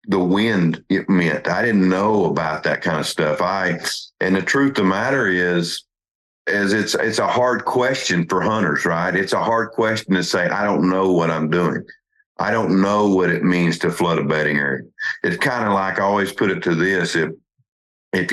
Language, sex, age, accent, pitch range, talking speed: English, male, 50-69, American, 90-110 Hz, 210 wpm